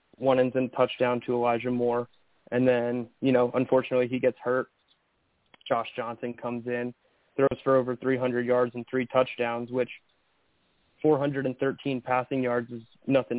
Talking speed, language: 150 wpm, English